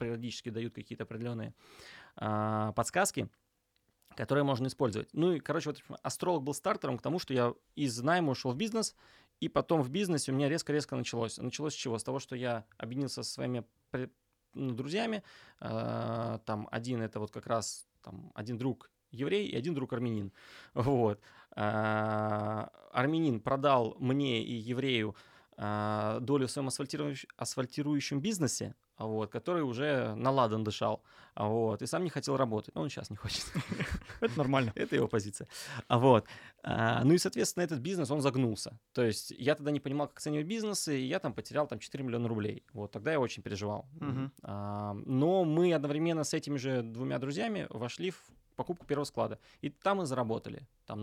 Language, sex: Russian, male